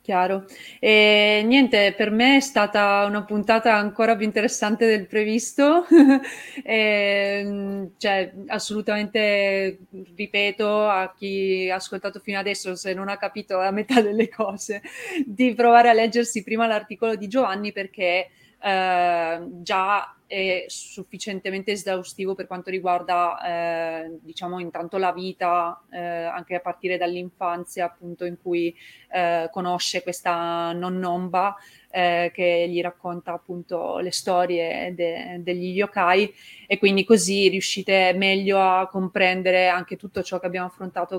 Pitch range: 180-215 Hz